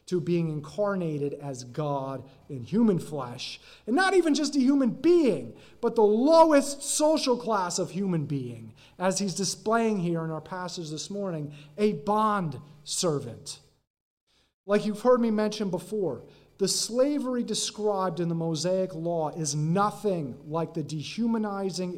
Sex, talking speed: male, 145 wpm